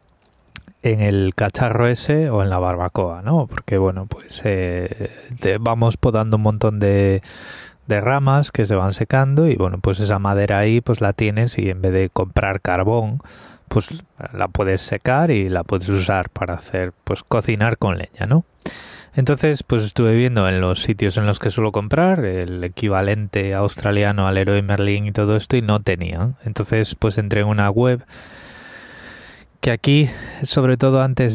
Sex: male